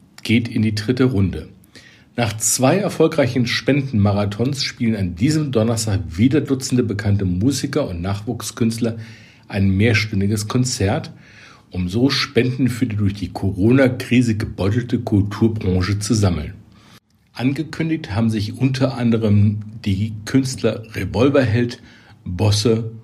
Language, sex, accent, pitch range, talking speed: German, male, German, 105-130 Hz, 110 wpm